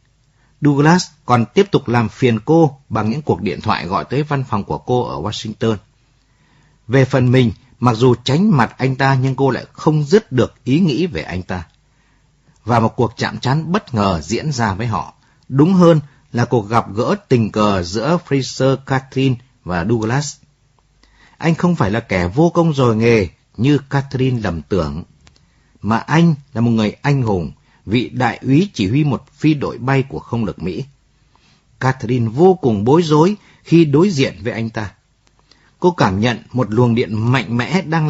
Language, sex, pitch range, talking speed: Vietnamese, male, 115-145 Hz, 185 wpm